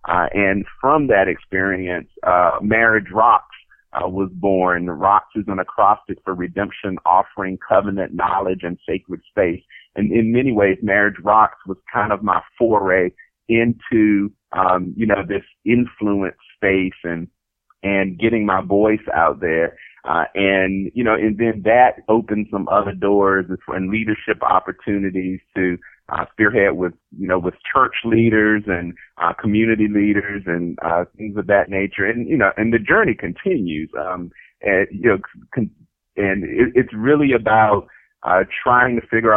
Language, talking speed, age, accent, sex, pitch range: English, 155 wpm, 40-59, American, male, 95-115 Hz